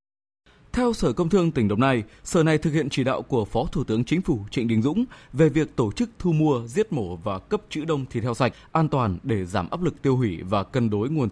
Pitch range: 110-160 Hz